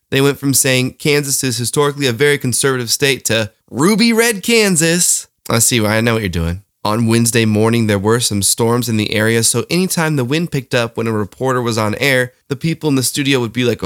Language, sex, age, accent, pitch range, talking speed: English, male, 20-39, American, 115-170 Hz, 230 wpm